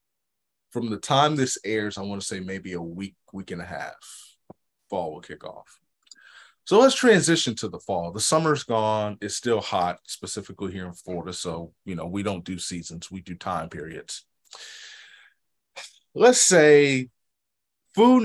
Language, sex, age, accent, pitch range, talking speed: English, male, 30-49, American, 100-130 Hz, 165 wpm